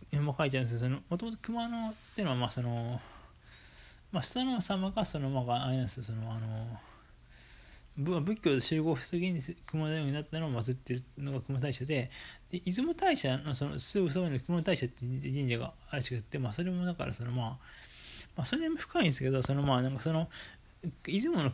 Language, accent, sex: Japanese, native, male